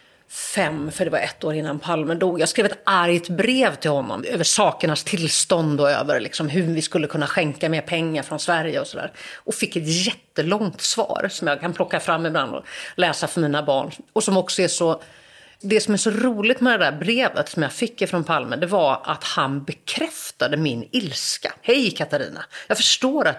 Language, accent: English, Swedish